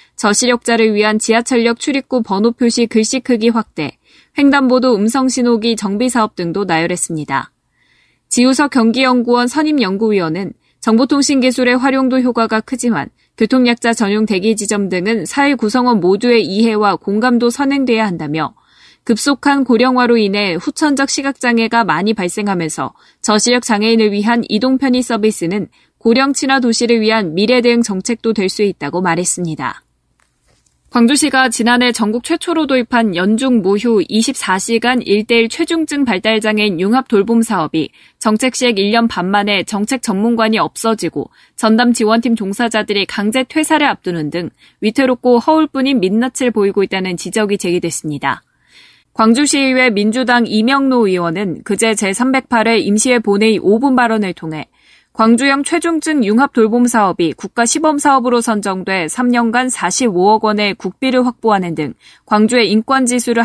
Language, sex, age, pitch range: Korean, female, 20-39, 205-250 Hz